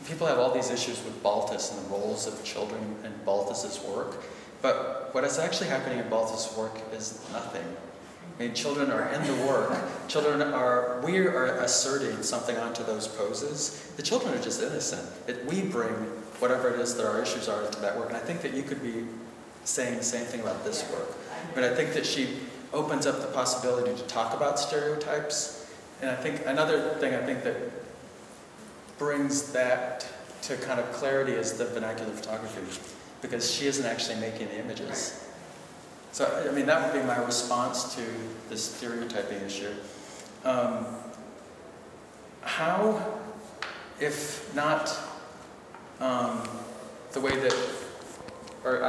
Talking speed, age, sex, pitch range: 160 wpm, 40-59, male, 110-140 Hz